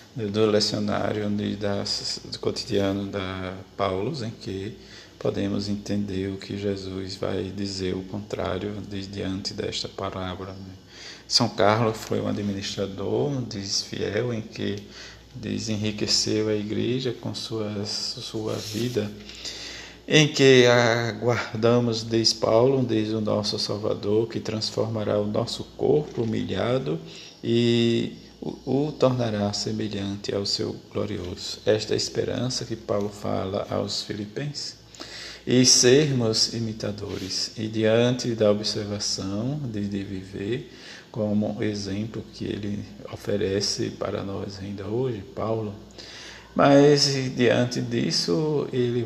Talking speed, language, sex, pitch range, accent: 115 wpm, Portuguese, male, 100-115 Hz, Brazilian